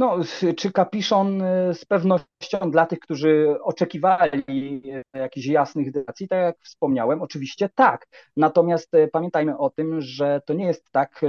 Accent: native